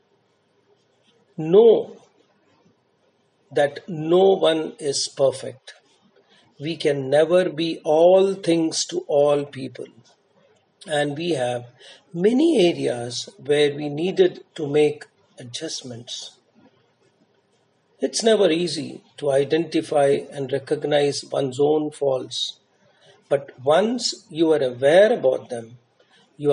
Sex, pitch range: male, 140-175 Hz